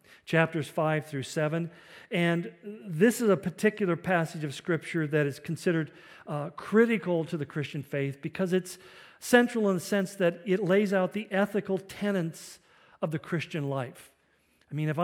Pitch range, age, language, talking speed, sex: 150-185 Hz, 50-69, English, 165 wpm, male